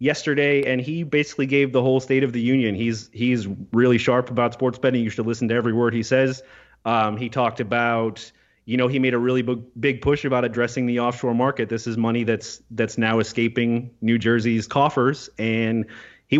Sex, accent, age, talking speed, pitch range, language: male, American, 30-49, 200 wpm, 115-140 Hz, English